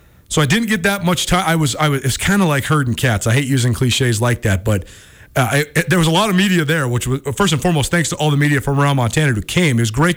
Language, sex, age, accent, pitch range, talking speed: English, male, 30-49, American, 135-165 Hz, 305 wpm